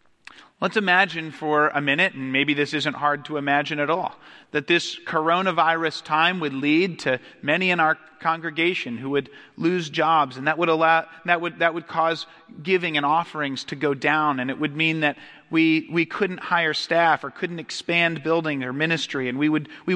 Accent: American